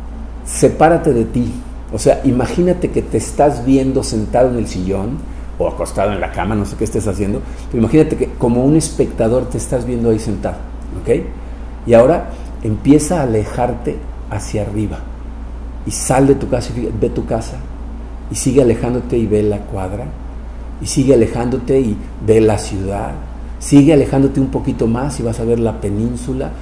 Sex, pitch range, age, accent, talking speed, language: male, 105-130 Hz, 50-69, Mexican, 175 wpm, Spanish